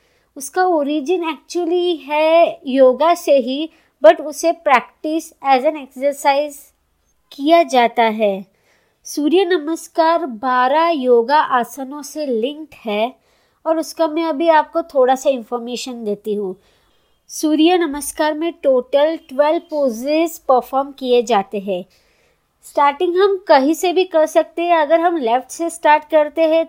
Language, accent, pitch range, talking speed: Hindi, native, 265-325 Hz, 135 wpm